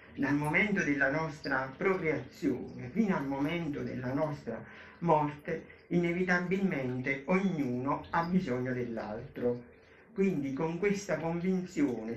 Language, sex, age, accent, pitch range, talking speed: Italian, male, 50-69, native, 130-170 Hz, 100 wpm